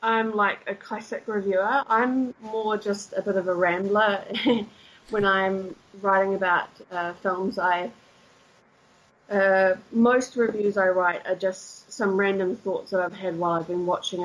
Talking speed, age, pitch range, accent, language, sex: 155 wpm, 20-39, 175-205 Hz, Australian, English, female